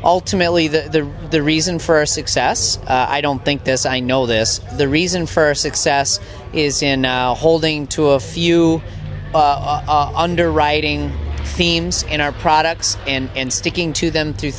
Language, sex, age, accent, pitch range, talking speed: English, male, 30-49, American, 125-160 Hz, 170 wpm